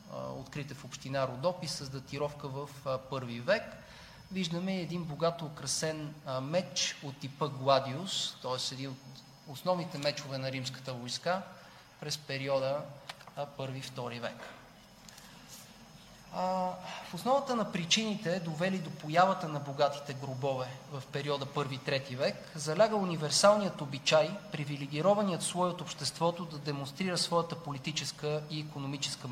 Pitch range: 140-180 Hz